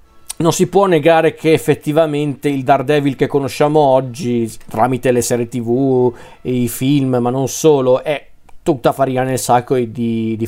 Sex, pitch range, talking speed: male, 125-145 Hz, 160 wpm